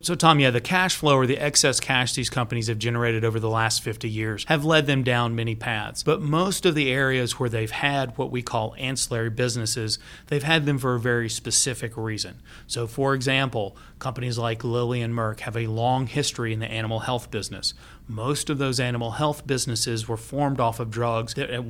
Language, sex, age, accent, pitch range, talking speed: English, male, 30-49, American, 115-135 Hz, 210 wpm